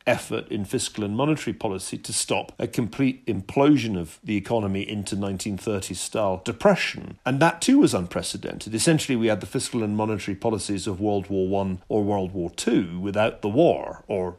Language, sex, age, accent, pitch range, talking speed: English, male, 40-59, British, 100-125 Hz, 175 wpm